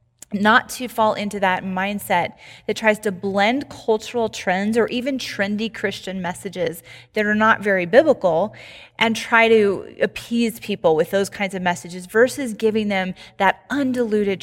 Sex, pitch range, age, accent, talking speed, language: female, 185-220 Hz, 20-39, American, 155 wpm, English